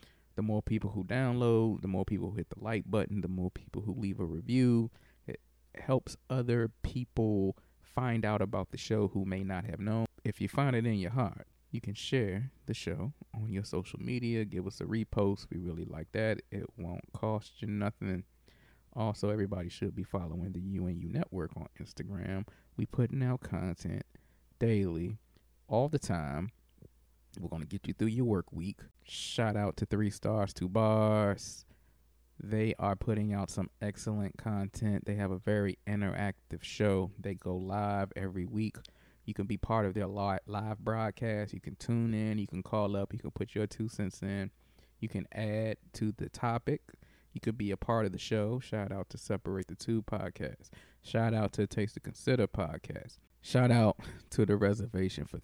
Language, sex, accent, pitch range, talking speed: English, male, American, 95-110 Hz, 185 wpm